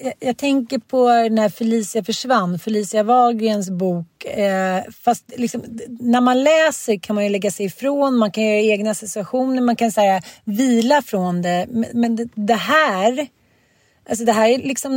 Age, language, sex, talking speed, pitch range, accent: 30-49, Swedish, female, 170 wpm, 205-255 Hz, native